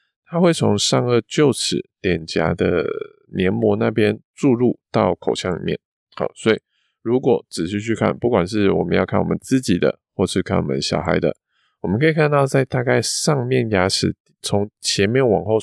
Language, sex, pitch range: Chinese, male, 90-115 Hz